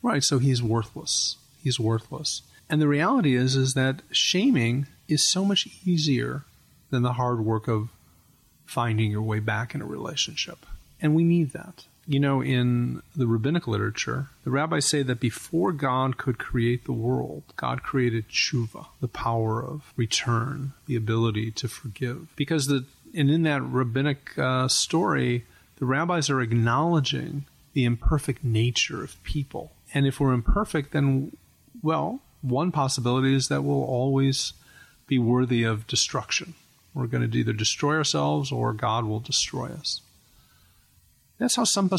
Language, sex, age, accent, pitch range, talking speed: English, male, 30-49, American, 115-145 Hz, 155 wpm